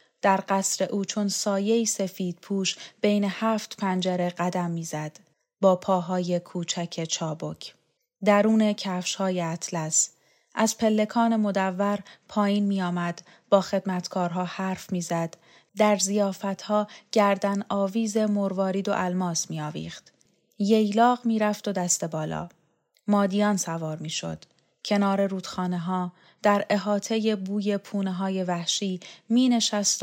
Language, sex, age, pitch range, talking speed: Persian, female, 30-49, 180-210 Hz, 110 wpm